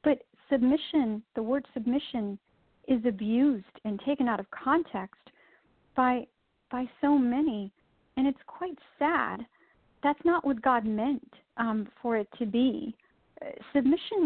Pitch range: 225-280 Hz